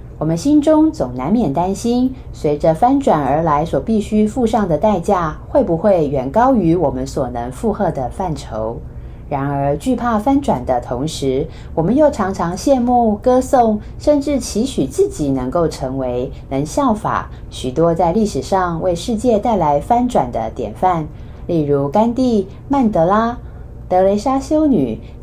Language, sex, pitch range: Chinese, female, 140-240 Hz